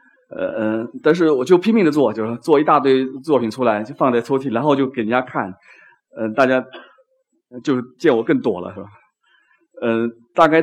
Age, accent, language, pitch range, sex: 30-49, native, Chinese, 115-160 Hz, male